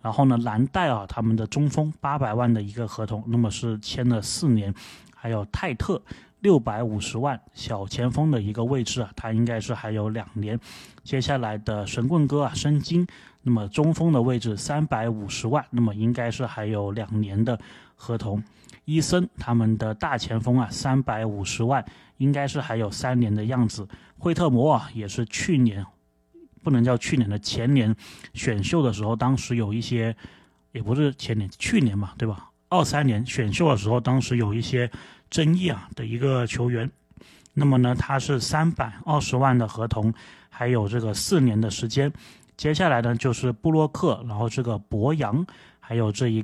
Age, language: 20-39, Chinese